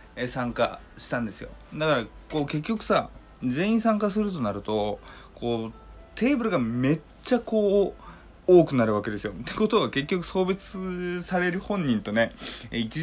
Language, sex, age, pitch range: Japanese, male, 20-39, 105-165 Hz